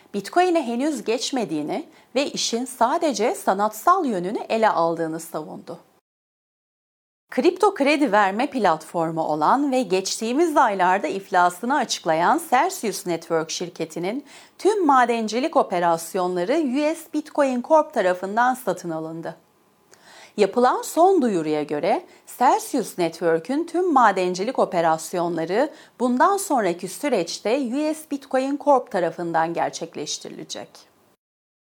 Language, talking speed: Turkish, 95 wpm